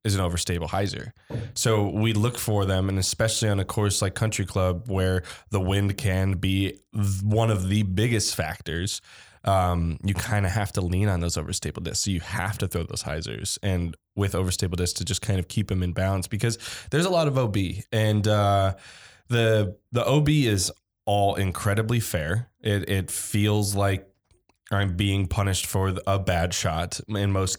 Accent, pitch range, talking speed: American, 90-105 Hz, 185 wpm